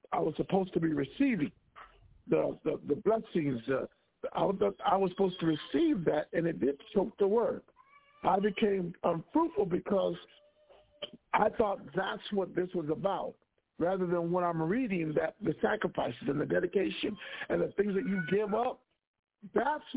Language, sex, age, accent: English, male, 50-69, American